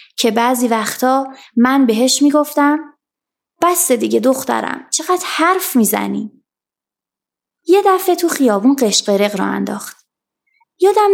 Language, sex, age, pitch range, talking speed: Persian, female, 20-39, 220-315 Hz, 110 wpm